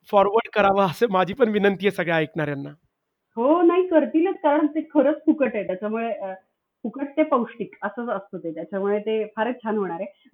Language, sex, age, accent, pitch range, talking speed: Marathi, female, 30-49, native, 205-265 Hz, 175 wpm